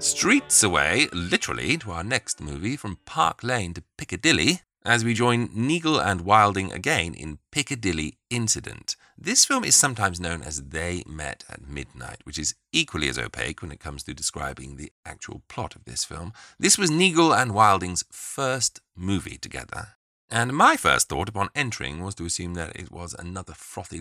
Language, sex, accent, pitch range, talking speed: English, male, British, 80-115 Hz, 175 wpm